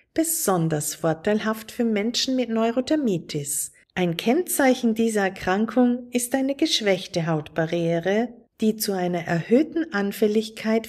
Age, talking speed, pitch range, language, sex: 50-69, 105 wpm, 175-255 Hz, German, female